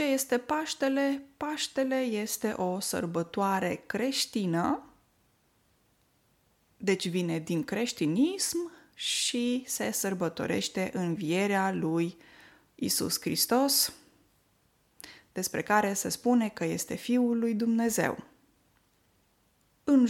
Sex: female